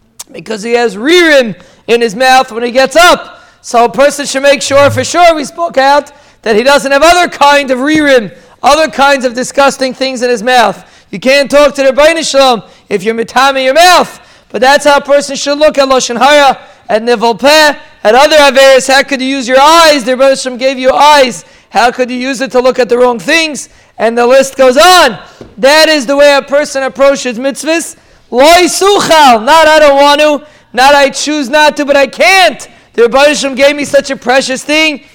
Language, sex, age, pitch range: English, male, 40-59, 255-300 Hz